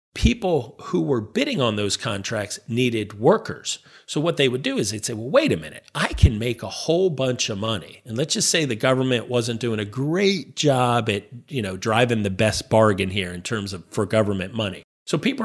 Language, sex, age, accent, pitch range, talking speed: English, male, 40-59, American, 105-130 Hz, 220 wpm